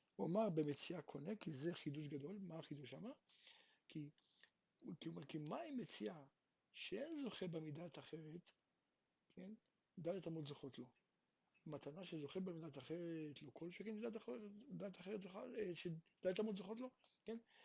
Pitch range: 160-225 Hz